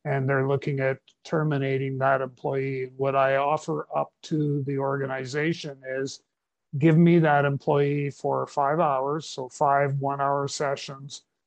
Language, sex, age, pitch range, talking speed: English, male, 50-69, 140-155 Hz, 135 wpm